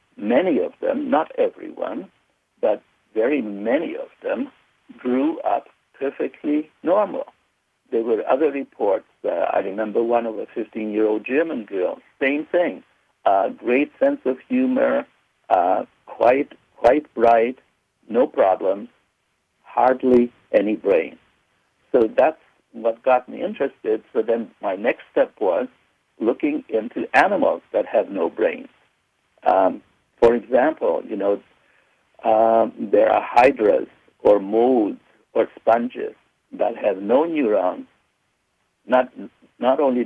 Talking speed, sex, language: 120 wpm, male, English